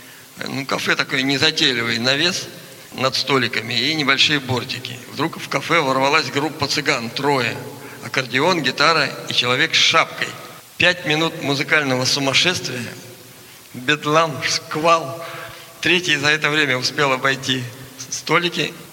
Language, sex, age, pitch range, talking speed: Russian, male, 50-69, 130-155 Hz, 115 wpm